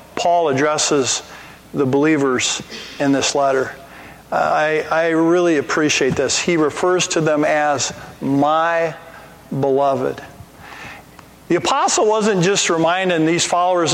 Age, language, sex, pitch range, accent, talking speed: 50-69, English, male, 145-180 Hz, American, 110 wpm